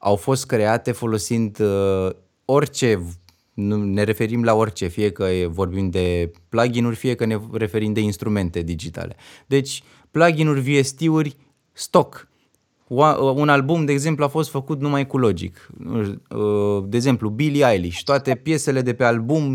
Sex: male